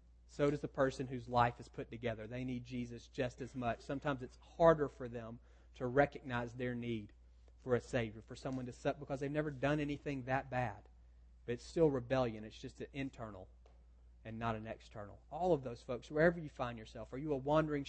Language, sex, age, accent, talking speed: English, male, 40-59, American, 210 wpm